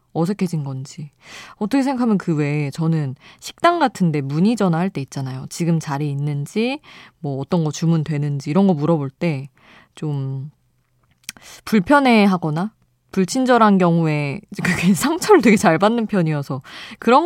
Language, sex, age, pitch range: Korean, female, 20-39, 145-210 Hz